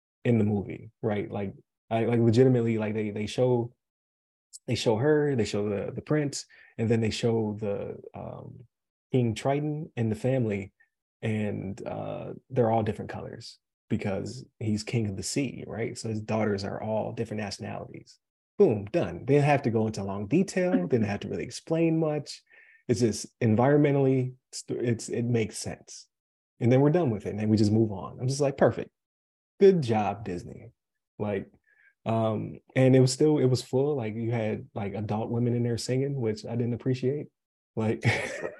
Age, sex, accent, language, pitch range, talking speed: 20-39, male, American, English, 105-130 Hz, 180 wpm